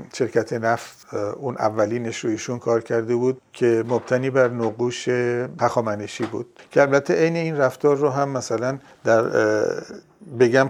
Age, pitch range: 50-69, 115-145 Hz